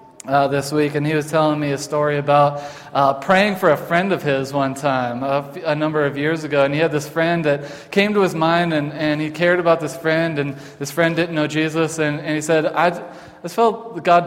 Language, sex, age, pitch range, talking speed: English, male, 20-39, 150-185 Hz, 240 wpm